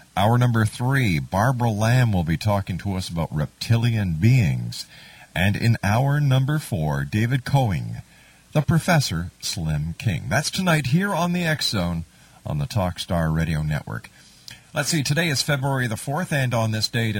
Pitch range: 105-140 Hz